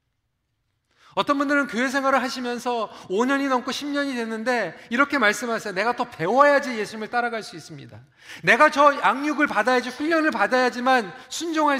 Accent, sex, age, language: native, male, 40-59, Korean